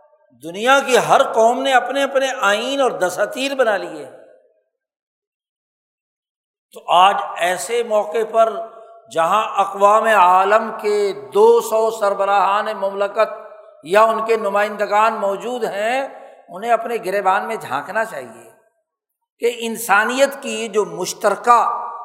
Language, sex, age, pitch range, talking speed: Urdu, male, 60-79, 215-285 Hz, 115 wpm